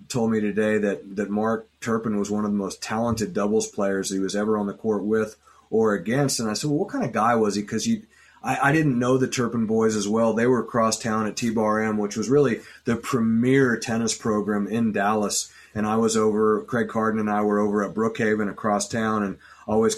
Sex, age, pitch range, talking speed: male, 30-49, 105-115 Hz, 230 wpm